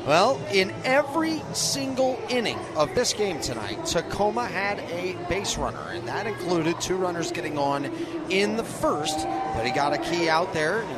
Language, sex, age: English, male, 30-49